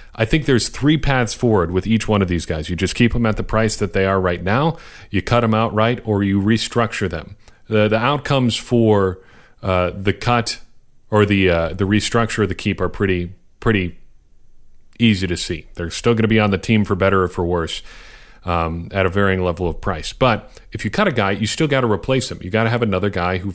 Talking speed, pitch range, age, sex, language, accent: 235 wpm, 95-115 Hz, 40-59, male, English, American